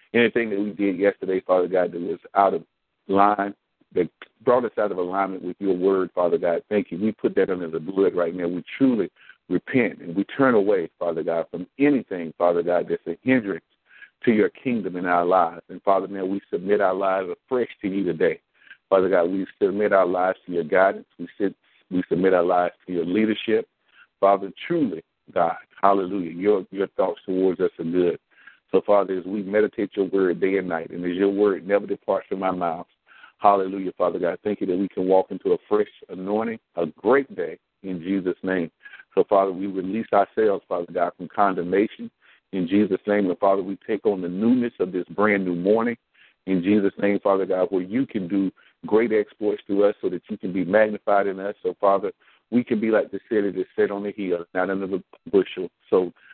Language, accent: English, American